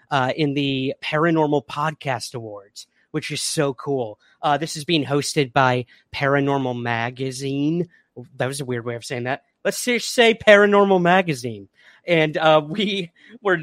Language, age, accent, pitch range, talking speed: English, 30-49, American, 125-155 Hz, 155 wpm